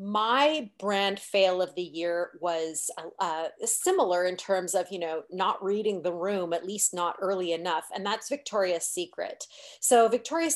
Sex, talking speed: female, 165 wpm